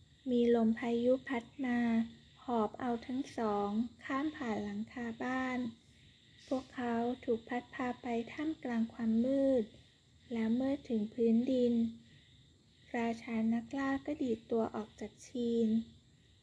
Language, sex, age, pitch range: Thai, female, 20-39, 225-255 Hz